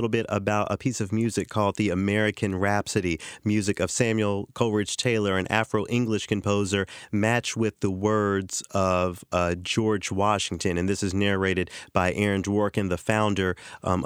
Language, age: English, 30-49